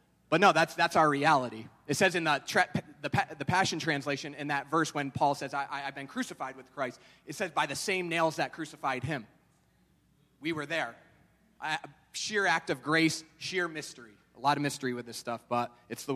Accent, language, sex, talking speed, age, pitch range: American, English, male, 210 wpm, 30-49, 130-155 Hz